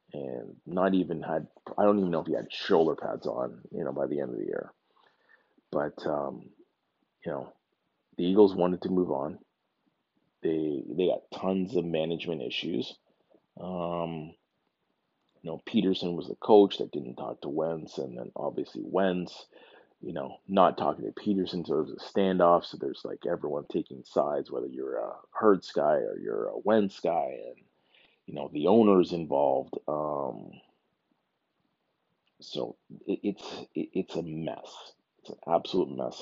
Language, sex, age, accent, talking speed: English, male, 30-49, American, 165 wpm